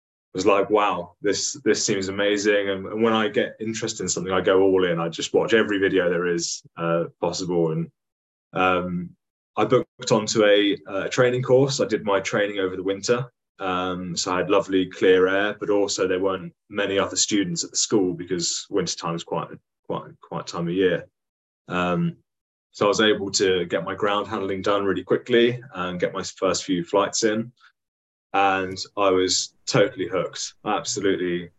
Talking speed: 190 wpm